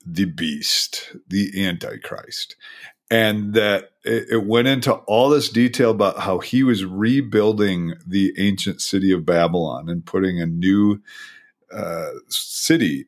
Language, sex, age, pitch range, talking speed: English, male, 40-59, 95-130 Hz, 130 wpm